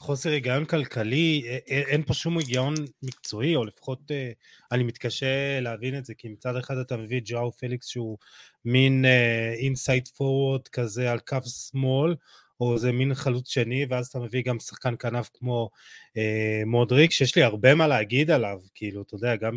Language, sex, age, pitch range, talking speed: Hebrew, male, 20-39, 120-145 Hz, 165 wpm